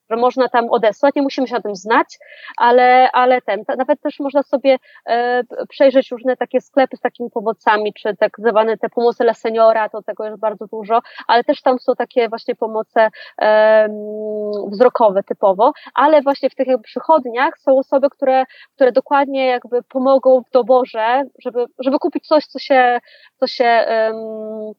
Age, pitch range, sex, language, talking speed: 20-39, 225-270 Hz, female, Polish, 170 wpm